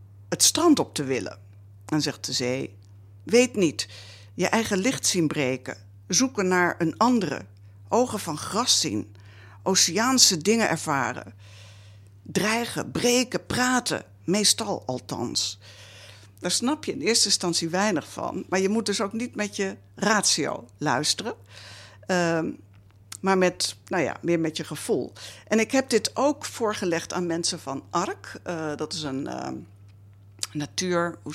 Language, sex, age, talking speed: Dutch, female, 60-79, 145 wpm